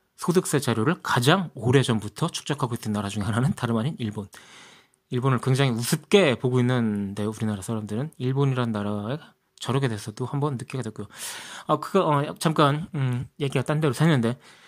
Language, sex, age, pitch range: Korean, male, 20-39, 125-195 Hz